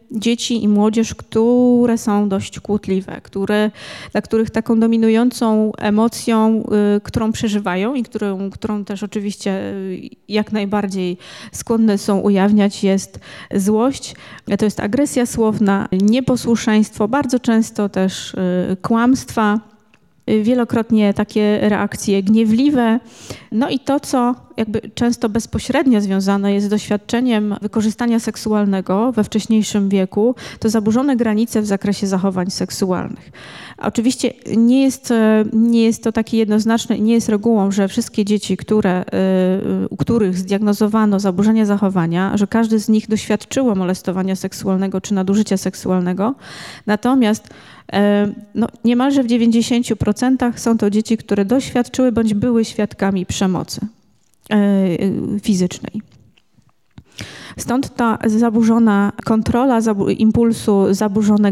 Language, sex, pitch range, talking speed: Polish, female, 200-230 Hz, 110 wpm